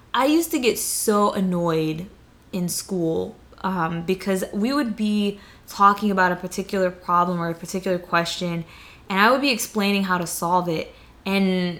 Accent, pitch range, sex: American, 175-210 Hz, female